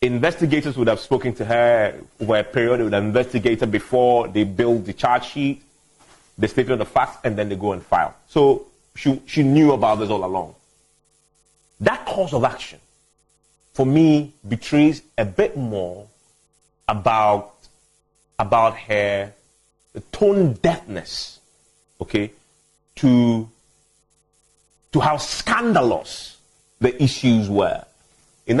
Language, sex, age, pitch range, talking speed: English, male, 30-49, 110-150 Hz, 130 wpm